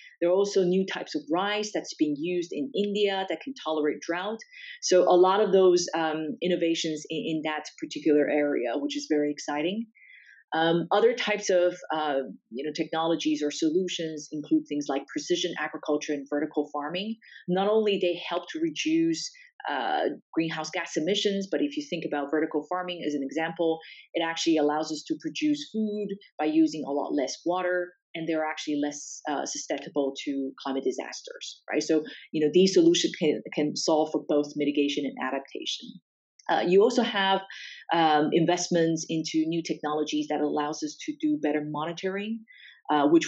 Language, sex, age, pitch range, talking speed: English, female, 30-49, 150-195 Hz, 170 wpm